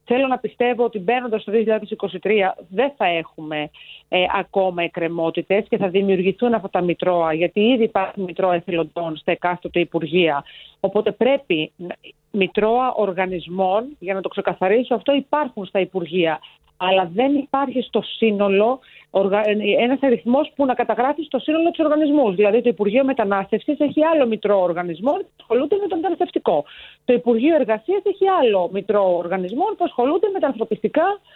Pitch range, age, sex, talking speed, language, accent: 195-295 Hz, 40-59, female, 145 wpm, Greek, native